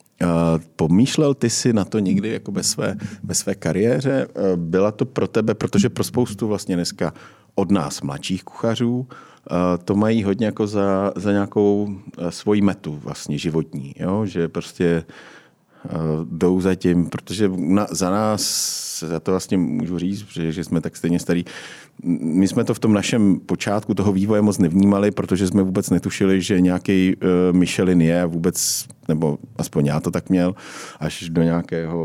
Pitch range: 80-95 Hz